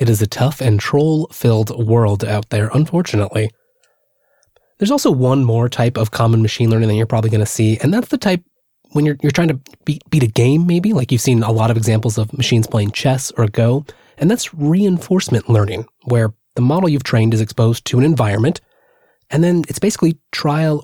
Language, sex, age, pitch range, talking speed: English, male, 20-39, 115-155 Hz, 205 wpm